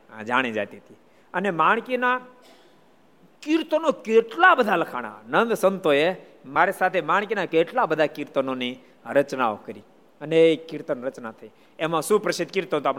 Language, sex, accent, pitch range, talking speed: Gujarati, male, native, 135-200 Hz, 90 wpm